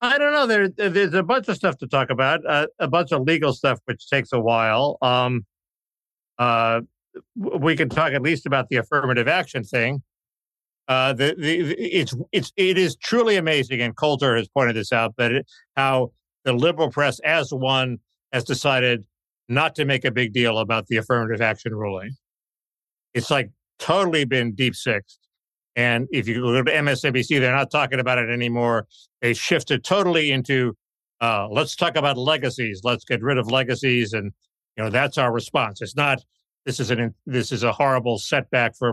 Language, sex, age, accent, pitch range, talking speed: English, male, 60-79, American, 120-145 Hz, 180 wpm